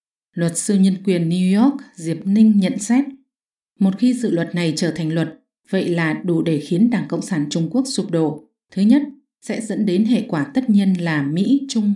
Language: English